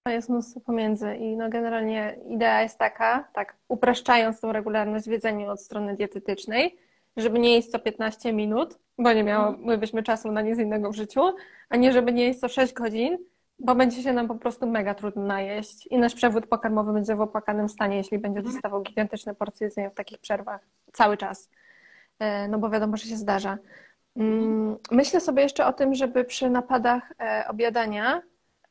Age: 20-39